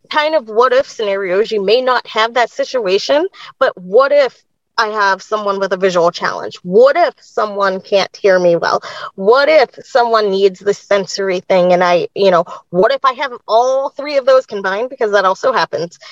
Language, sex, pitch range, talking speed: English, female, 215-300 Hz, 195 wpm